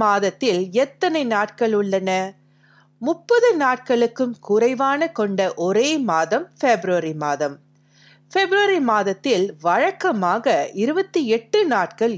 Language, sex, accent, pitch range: Tamil, female, native, 175-285 Hz